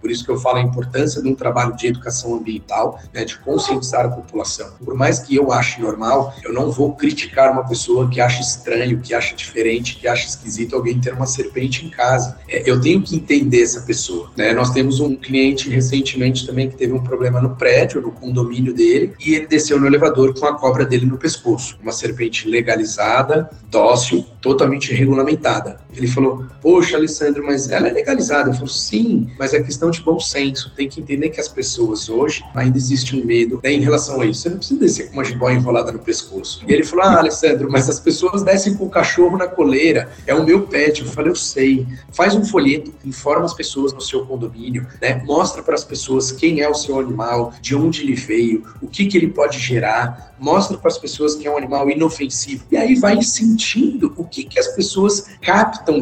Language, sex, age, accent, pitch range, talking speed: Portuguese, male, 40-59, Brazilian, 125-165 Hz, 210 wpm